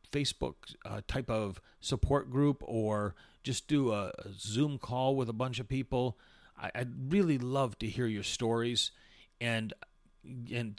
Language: English